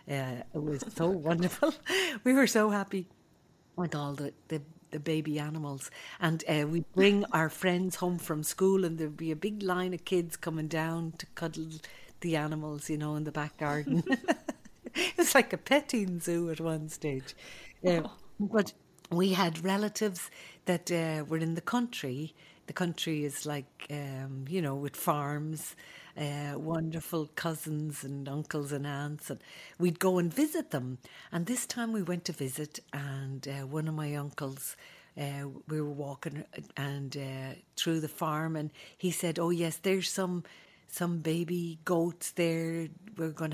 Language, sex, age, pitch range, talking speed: English, female, 60-79, 150-180 Hz, 165 wpm